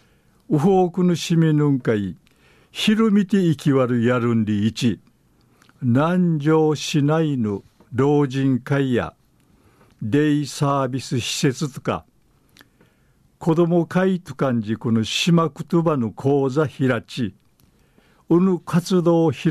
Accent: native